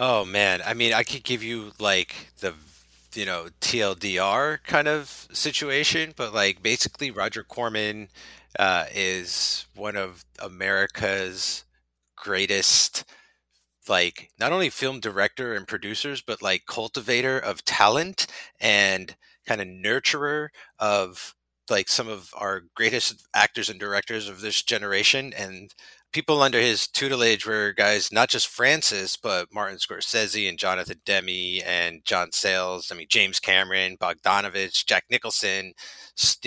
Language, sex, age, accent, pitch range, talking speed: English, male, 30-49, American, 95-135 Hz, 135 wpm